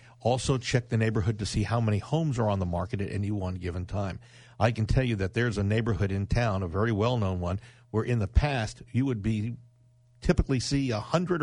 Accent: American